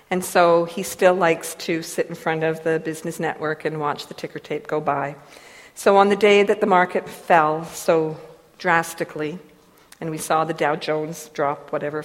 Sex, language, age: female, English, 50-69